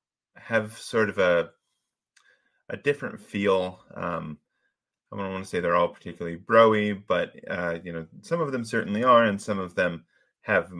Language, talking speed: English, 170 wpm